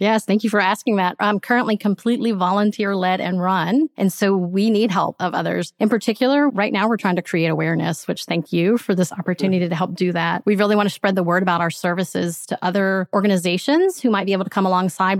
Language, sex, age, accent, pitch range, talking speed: English, female, 30-49, American, 175-205 Hz, 235 wpm